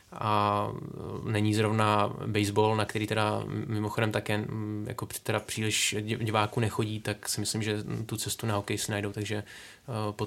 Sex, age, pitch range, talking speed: male, 20-39, 105-110 Hz, 160 wpm